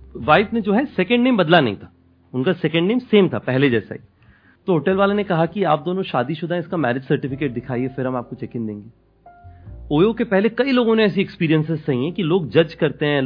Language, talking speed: Hindi, 215 wpm